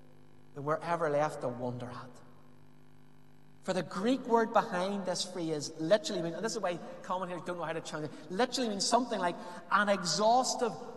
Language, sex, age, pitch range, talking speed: English, male, 30-49, 165-230 Hz, 175 wpm